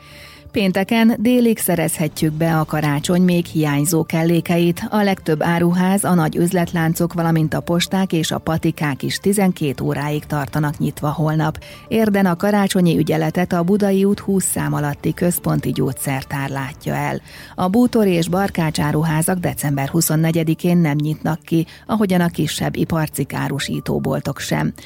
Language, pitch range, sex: Hungarian, 150-180 Hz, female